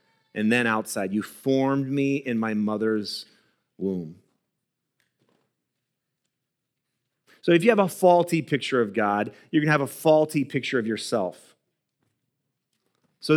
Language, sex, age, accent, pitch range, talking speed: English, male, 30-49, American, 115-150 Hz, 125 wpm